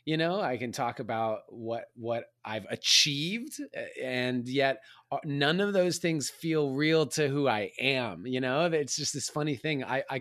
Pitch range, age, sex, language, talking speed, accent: 115-145 Hz, 30-49, male, English, 180 wpm, American